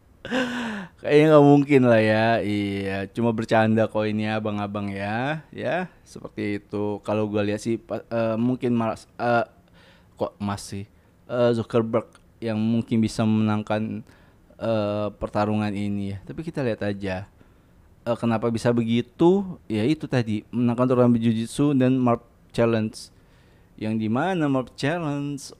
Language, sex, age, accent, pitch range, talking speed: Indonesian, male, 20-39, native, 100-130 Hz, 130 wpm